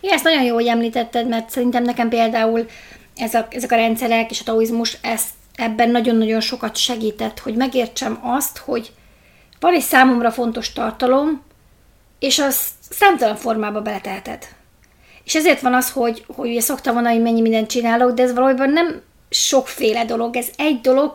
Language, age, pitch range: Hungarian, 30-49, 230-260 Hz